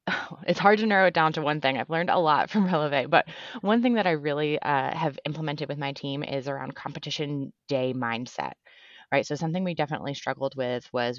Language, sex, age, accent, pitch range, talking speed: English, female, 20-39, American, 135-160 Hz, 215 wpm